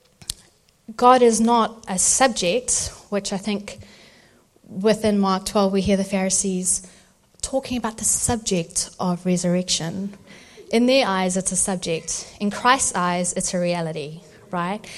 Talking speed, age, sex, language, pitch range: 135 wpm, 30-49, female, English, 185-235 Hz